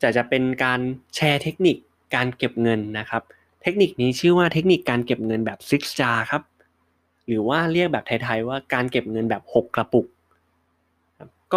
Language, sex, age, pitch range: Thai, male, 20-39, 110-145 Hz